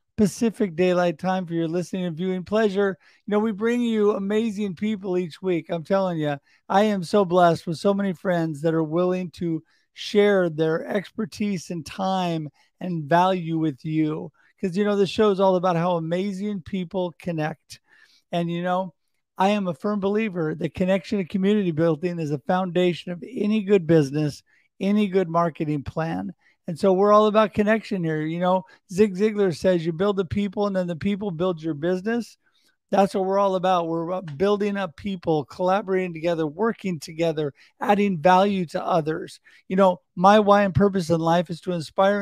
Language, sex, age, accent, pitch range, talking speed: English, male, 50-69, American, 175-205 Hz, 185 wpm